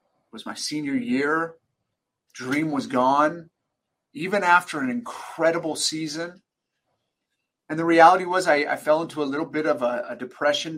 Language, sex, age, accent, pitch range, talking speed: English, male, 30-49, American, 135-165 Hz, 150 wpm